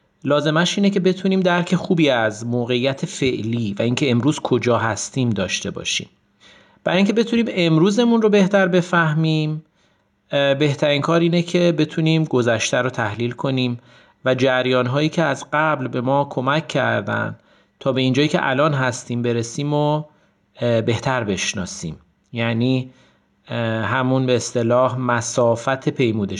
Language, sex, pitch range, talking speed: Persian, male, 120-150 Hz, 125 wpm